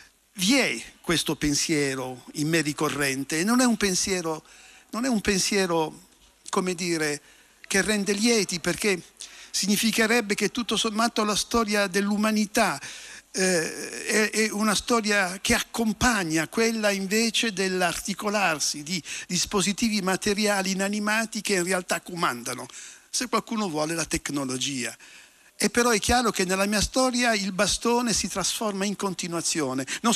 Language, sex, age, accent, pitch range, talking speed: Italian, male, 60-79, native, 170-225 Hz, 130 wpm